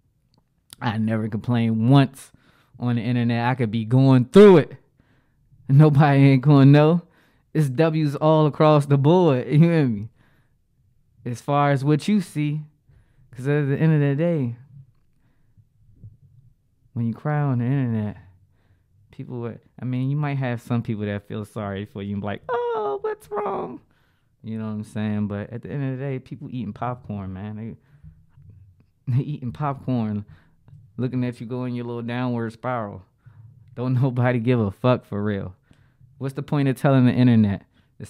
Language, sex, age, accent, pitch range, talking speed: English, male, 20-39, American, 115-135 Hz, 170 wpm